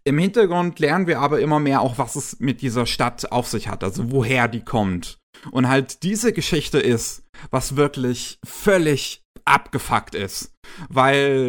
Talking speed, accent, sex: 160 wpm, German, male